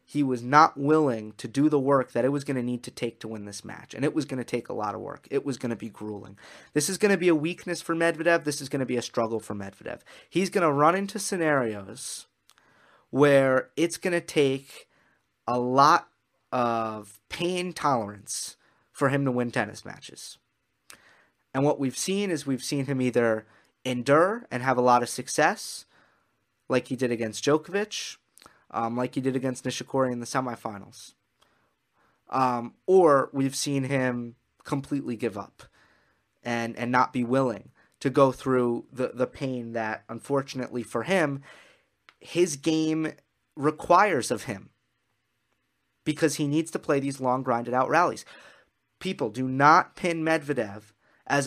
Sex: male